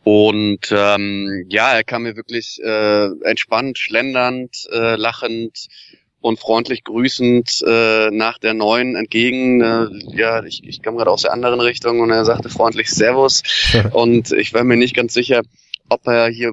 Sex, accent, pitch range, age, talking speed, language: male, German, 105-120 Hz, 20-39, 165 wpm, German